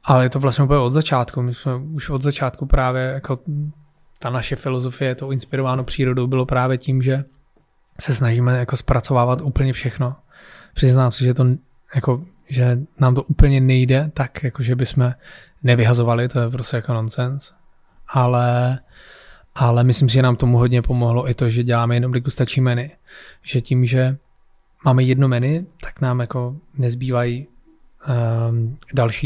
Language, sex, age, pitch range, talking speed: Czech, male, 20-39, 120-135 Hz, 160 wpm